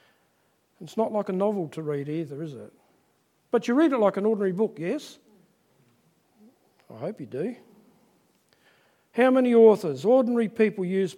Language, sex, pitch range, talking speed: English, male, 155-225 Hz, 155 wpm